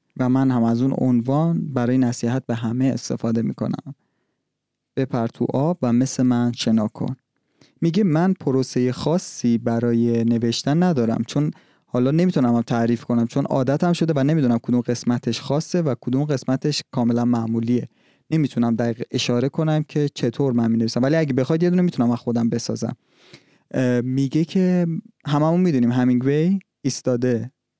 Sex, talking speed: male, 150 wpm